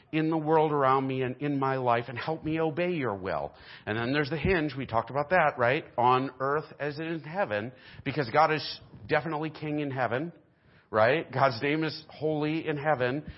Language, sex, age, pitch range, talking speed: English, male, 40-59, 120-155 Hz, 195 wpm